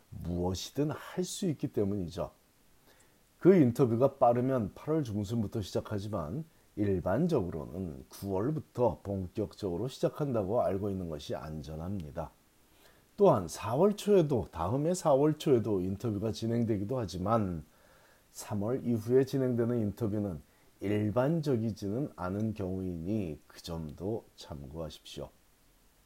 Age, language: 40-59, Korean